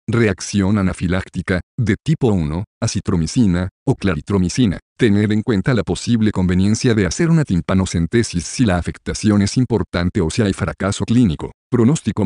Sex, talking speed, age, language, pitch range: male, 140 wpm, 50-69, Spanish, 95-115 Hz